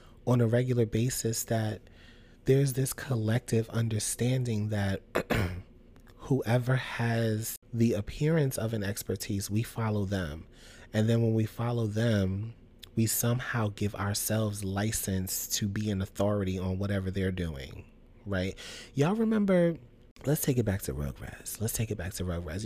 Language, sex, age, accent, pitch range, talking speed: English, male, 30-49, American, 95-115 Hz, 145 wpm